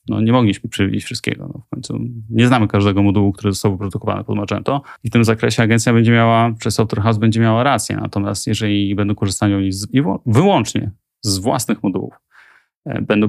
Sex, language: male, Polish